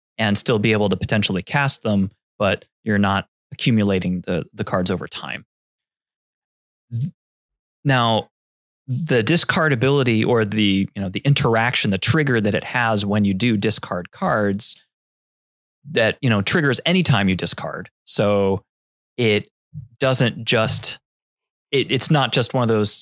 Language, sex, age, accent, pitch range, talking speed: English, male, 20-39, American, 100-130 Hz, 150 wpm